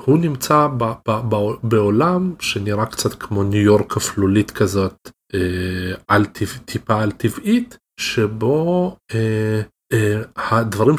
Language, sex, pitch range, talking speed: Hebrew, male, 100-120 Hz, 80 wpm